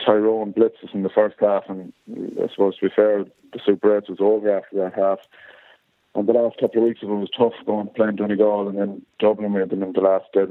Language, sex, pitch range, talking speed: English, male, 100-125 Hz, 245 wpm